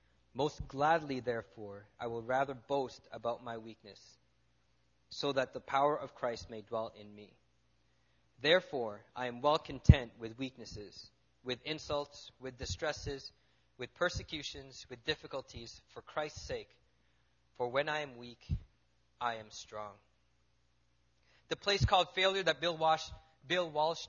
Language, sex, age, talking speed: English, male, 20-39, 135 wpm